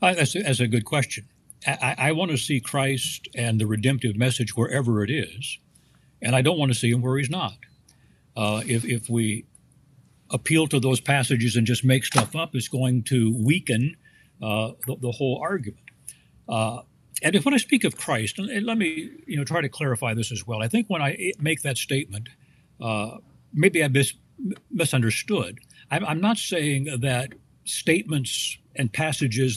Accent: American